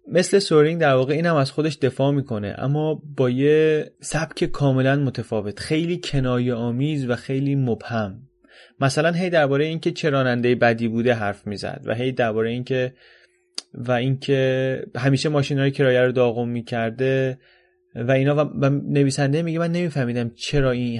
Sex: male